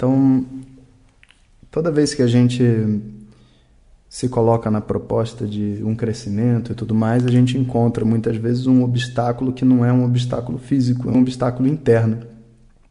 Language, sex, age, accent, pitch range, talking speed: Portuguese, male, 20-39, Brazilian, 115-130 Hz, 155 wpm